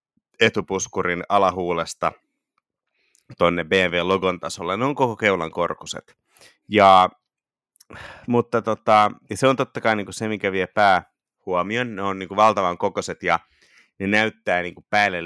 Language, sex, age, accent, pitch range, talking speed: Finnish, male, 30-49, native, 90-120 Hz, 130 wpm